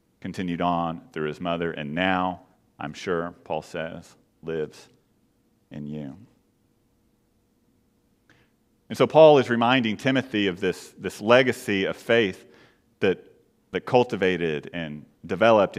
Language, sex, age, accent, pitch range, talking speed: English, male, 40-59, American, 85-115 Hz, 120 wpm